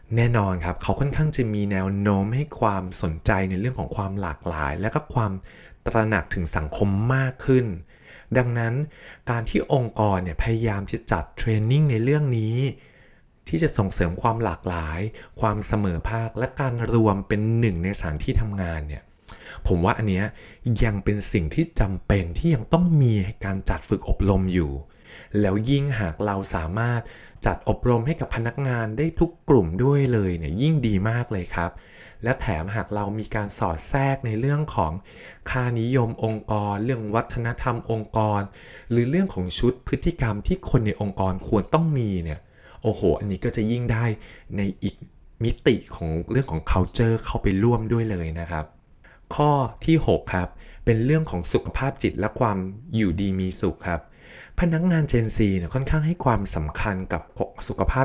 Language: Thai